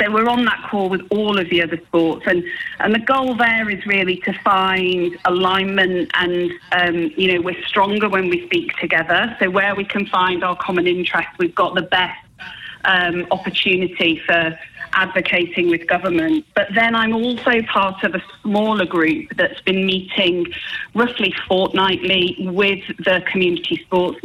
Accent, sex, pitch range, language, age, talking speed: British, female, 175-205 Hz, English, 30-49, 165 wpm